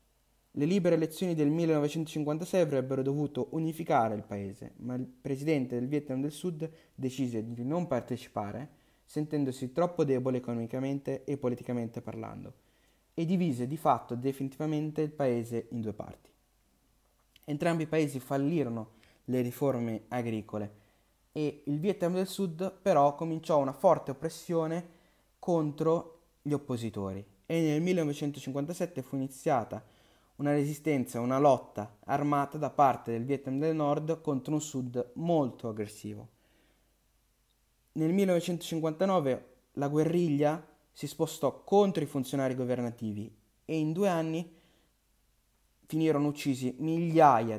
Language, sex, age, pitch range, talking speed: Italian, male, 20-39, 120-160 Hz, 120 wpm